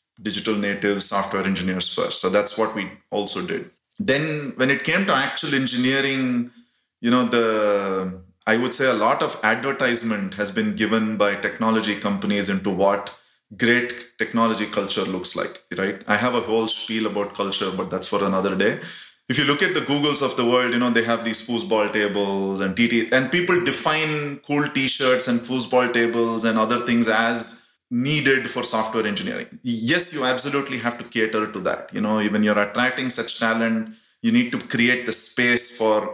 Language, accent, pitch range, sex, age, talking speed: English, Indian, 105-130 Hz, male, 30-49, 185 wpm